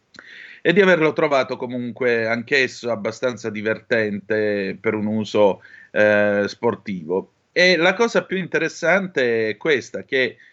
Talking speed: 120 wpm